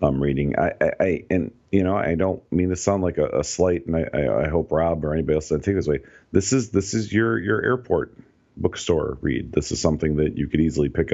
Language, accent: English, American